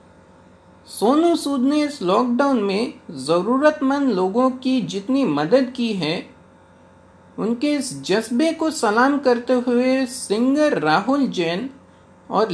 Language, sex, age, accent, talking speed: Hindi, male, 50-69, native, 115 wpm